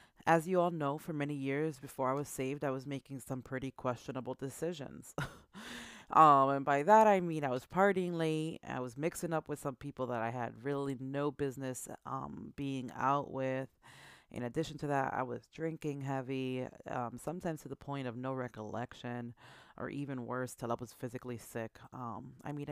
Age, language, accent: 30-49, English, American